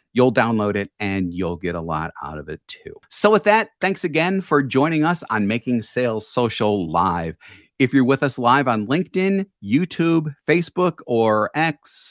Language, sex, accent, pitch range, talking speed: English, male, American, 95-155 Hz, 180 wpm